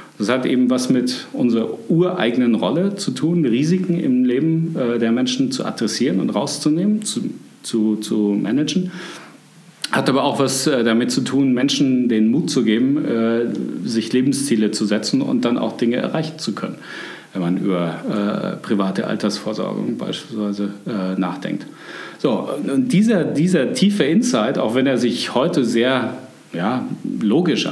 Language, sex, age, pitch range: German, male, 40-59, 115-145 Hz